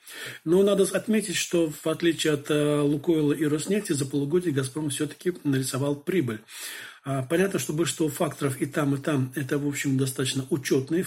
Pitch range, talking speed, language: 145-170 Hz, 165 wpm, Turkish